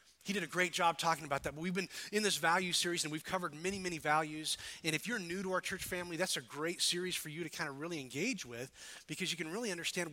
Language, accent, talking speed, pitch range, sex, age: English, American, 265 wpm, 140-180 Hz, male, 30-49